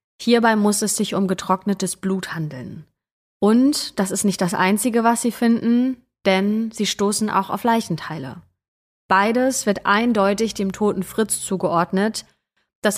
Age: 20-39